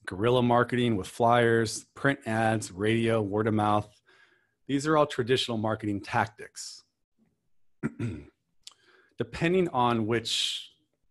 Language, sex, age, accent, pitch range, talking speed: English, male, 30-49, American, 100-115 Hz, 105 wpm